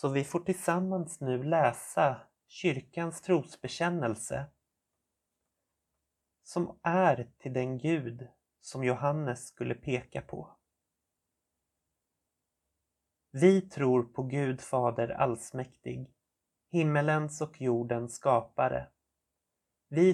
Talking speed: 85 wpm